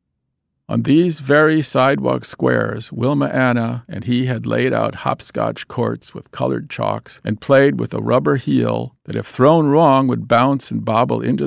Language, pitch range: English, 115-140 Hz